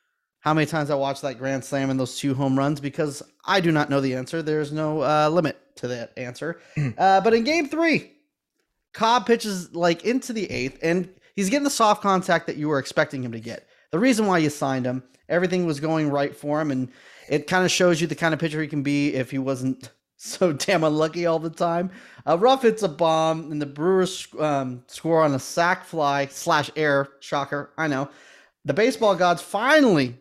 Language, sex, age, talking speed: English, male, 30-49, 215 wpm